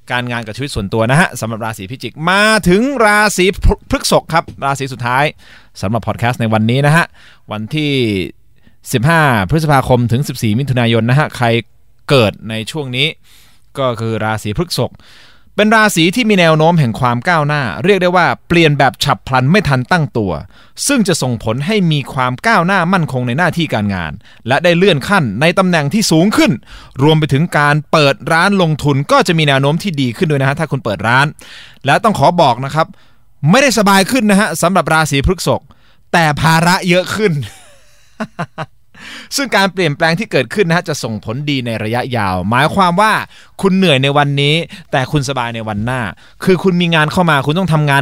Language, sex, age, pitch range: Thai, male, 20-39, 115-165 Hz